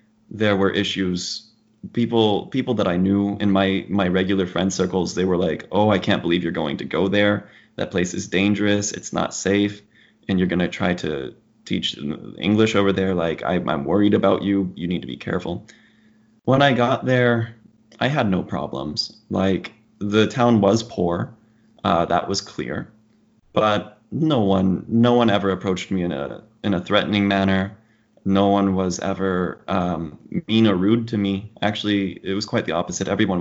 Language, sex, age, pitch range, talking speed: English, male, 20-39, 95-110 Hz, 180 wpm